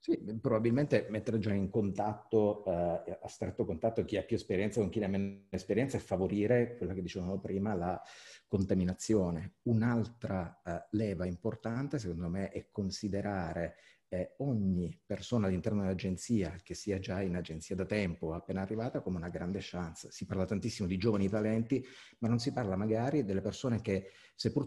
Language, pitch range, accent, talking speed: Italian, 95-115 Hz, native, 165 wpm